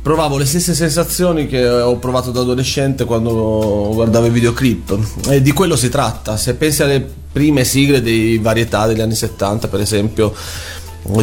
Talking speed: 165 wpm